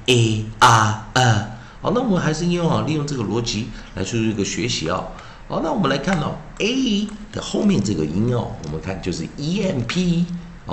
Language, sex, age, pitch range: Chinese, male, 50-69, 105-170 Hz